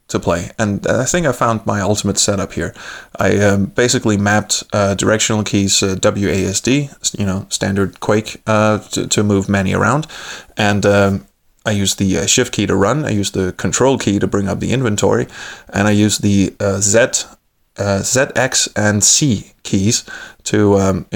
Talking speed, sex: 175 wpm, male